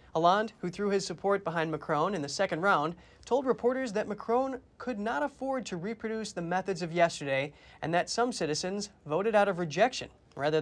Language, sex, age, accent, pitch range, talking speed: English, male, 30-49, American, 165-215 Hz, 185 wpm